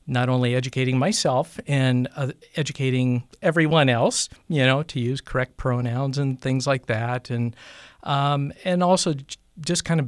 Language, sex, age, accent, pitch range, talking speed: English, male, 50-69, American, 125-150 Hz, 160 wpm